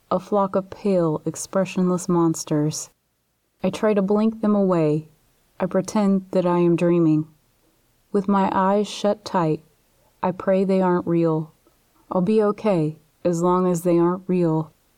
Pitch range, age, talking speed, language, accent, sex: 160-190 Hz, 30-49, 150 wpm, English, American, female